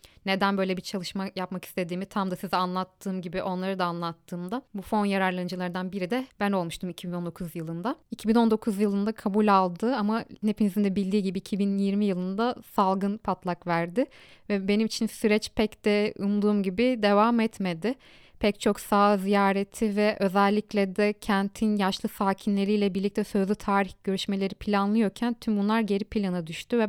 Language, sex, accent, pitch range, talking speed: Turkish, female, native, 195-225 Hz, 150 wpm